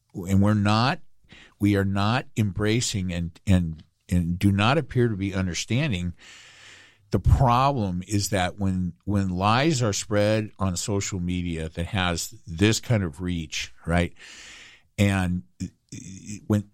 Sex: male